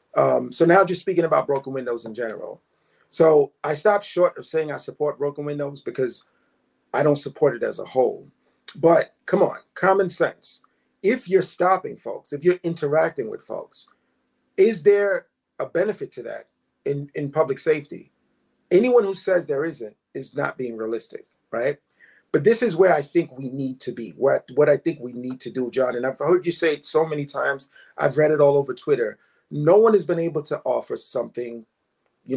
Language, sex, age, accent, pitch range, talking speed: English, male, 40-59, American, 140-200 Hz, 195 wpm